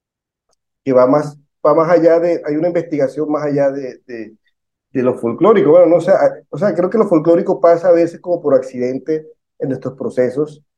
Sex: male